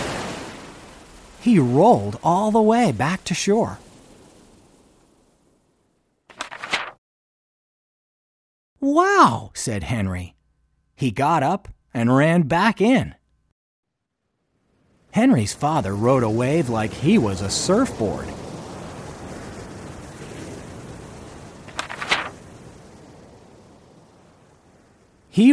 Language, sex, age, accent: Chinese, male, 40-59, American